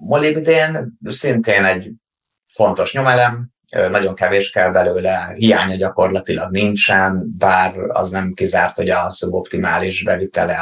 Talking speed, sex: 115 wpm, male